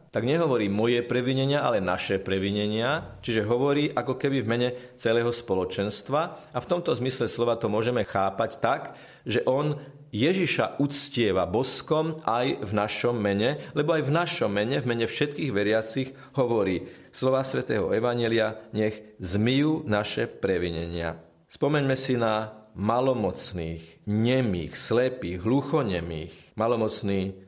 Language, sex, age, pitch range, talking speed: Slovak, male, 40-59, 105-135 Hz, 125 wpm